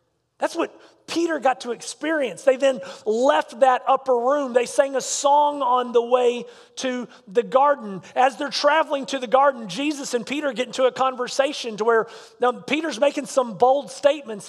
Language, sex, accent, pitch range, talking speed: English, male, American, 200-250 Hz, 175 wpm